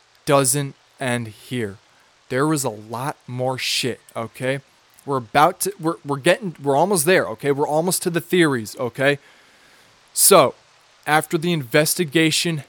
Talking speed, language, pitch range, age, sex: 140 wpm, English, 135-170 Hz, 20-39, male